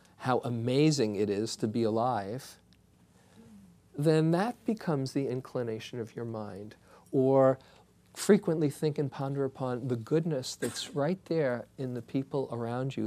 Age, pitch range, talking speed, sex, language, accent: 50-69, 115-140 Hz, 140 wpm, male, English, American